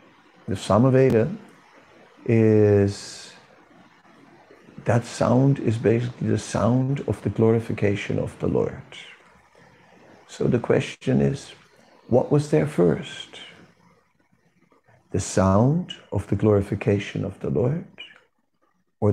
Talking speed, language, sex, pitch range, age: 100 wpm, English, male, 100-130 Hz, 60-79